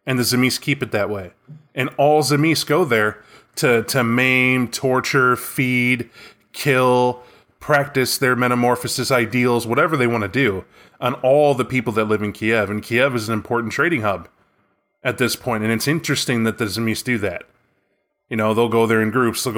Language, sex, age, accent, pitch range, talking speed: English, male, 20-39, American, 110-135 Hz, 185 wpm